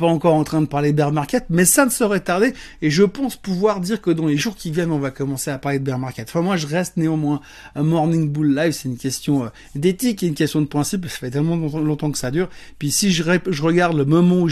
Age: 30-49